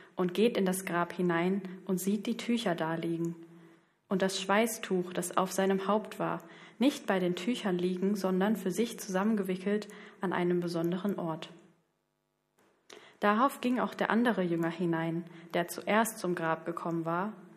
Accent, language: German, German